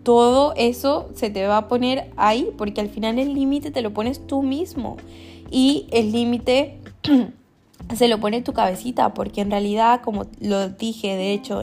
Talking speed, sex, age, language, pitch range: 175 wpm, female, 10-29, Spanish, 205-255 Hz